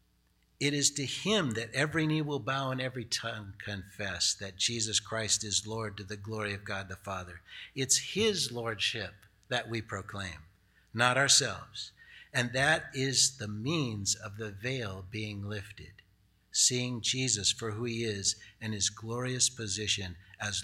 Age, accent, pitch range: 60-79, American, 100-130 Hz